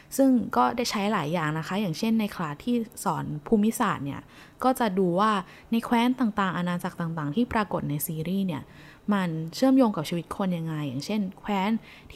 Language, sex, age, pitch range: Thai, female, 10-29, 170-220 Hz